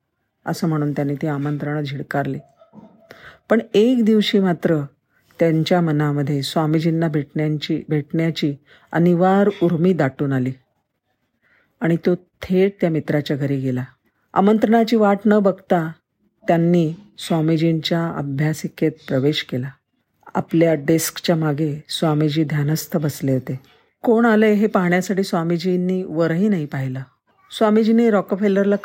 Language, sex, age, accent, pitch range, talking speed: Marathi, female, 50-69, native, 150-185 Hz, 110 wpm